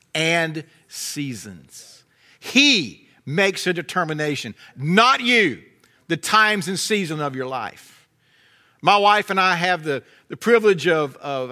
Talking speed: 130 wpm